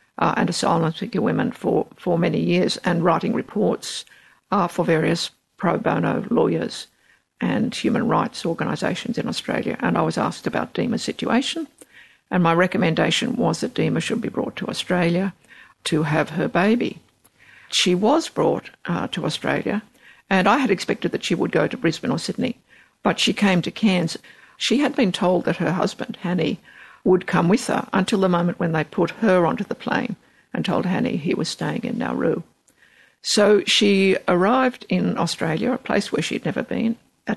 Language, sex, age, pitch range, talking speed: English, female, 60-79, 175-230 Hz, 180 wpm